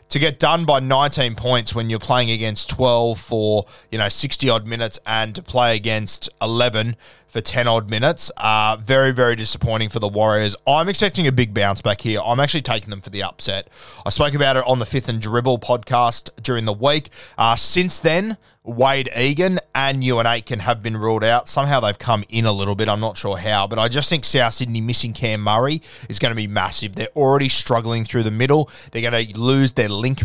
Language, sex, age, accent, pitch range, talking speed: English, male, 20-39, Australian, 105-130 Hz, 215 wpm